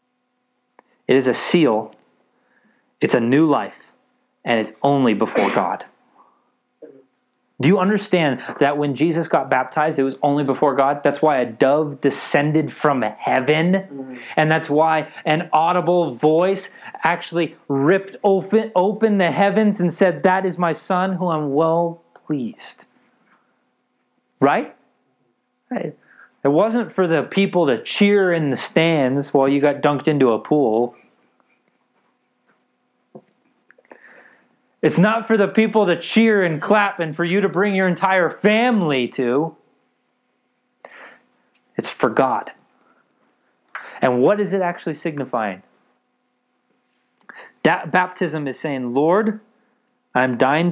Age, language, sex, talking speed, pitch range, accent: 30-49, English, male, 125 wpm, 140-190 Hz, American